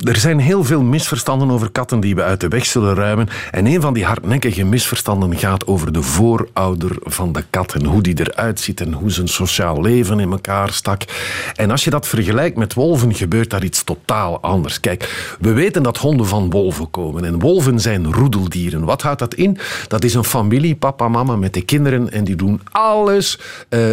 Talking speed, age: 205 wpm, 50-69